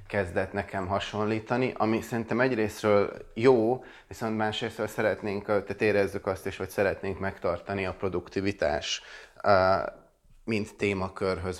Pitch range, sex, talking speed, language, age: 90-105 Hz, male, 115 wpm, Hungarian, 30-49